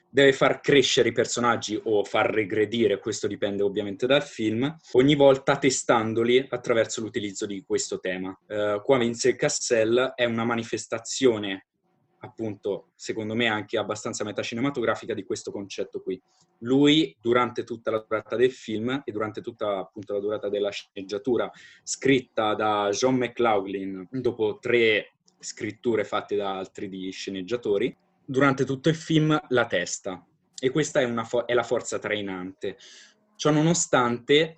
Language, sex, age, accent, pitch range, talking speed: Italian, male, 20-39, native, 105-130 Hz, 140 wpm